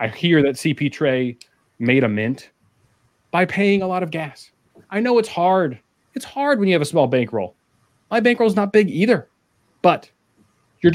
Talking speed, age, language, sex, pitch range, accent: 185 wpm, 30-49, English, male, 115-150 Hz, American